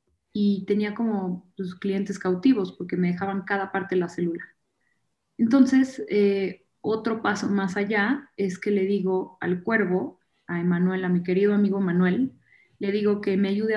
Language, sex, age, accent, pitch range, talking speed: Spanish, female, 20-39, Mexican, 185-210 Hz, 165 wpm